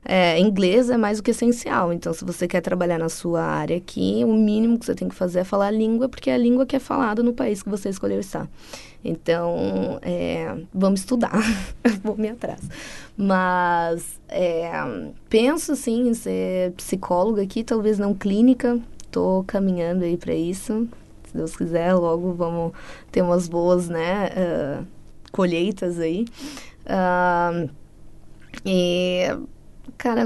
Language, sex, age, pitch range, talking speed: Portuguese, female, 20-39, 170-210 Hz, 155 wpm